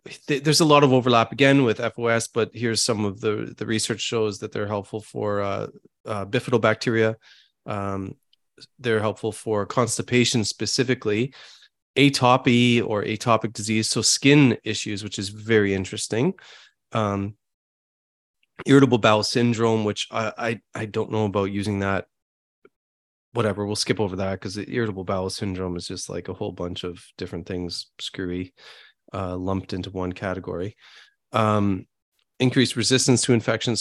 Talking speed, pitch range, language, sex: 145 wpm, 95-115 Hz, English, male